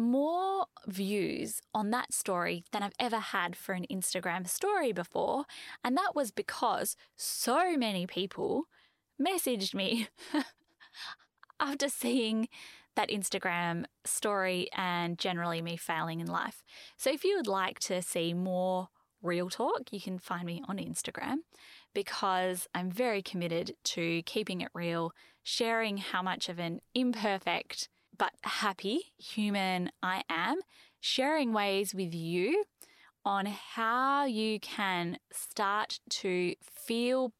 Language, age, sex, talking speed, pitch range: English, 10-29, female, 130 wpm, 185-250 Hz